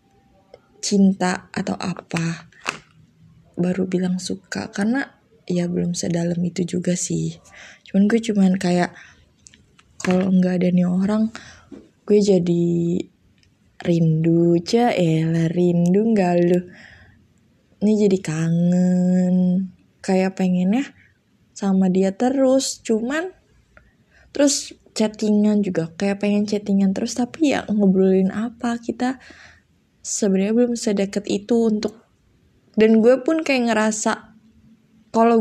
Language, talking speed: Indonesian, 105 wpm